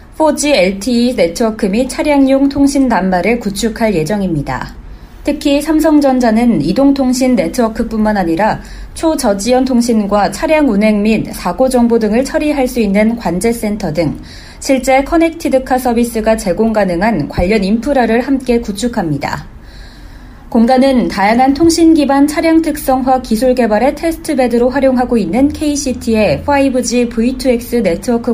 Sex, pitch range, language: female, 210-270 Hz, Korean